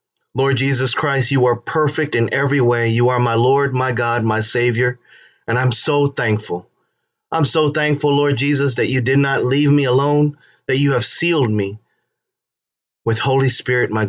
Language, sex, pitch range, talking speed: English, male, 120-145 Hz, 180 wpm